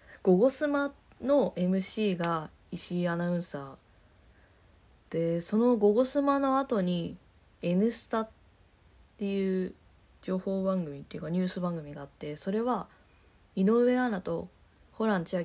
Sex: female